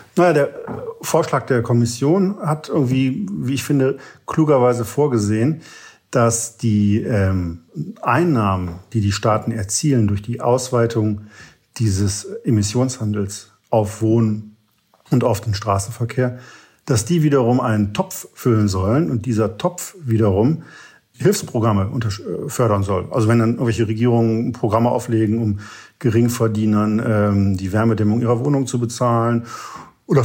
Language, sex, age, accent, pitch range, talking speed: German, male, 50-69, German, 105-125 Hz, 125 wpm